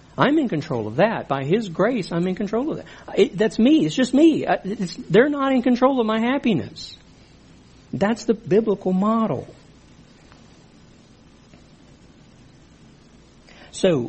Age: 60-79